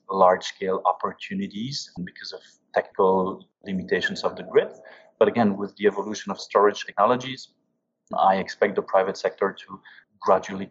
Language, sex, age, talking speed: English, male, 30-49, 135 wpm